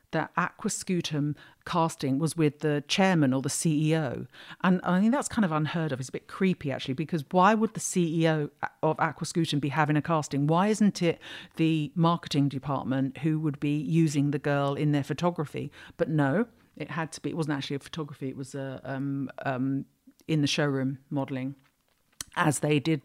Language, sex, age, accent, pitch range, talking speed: English, female, 50-69, British, 145-175 Hz, 185 wpm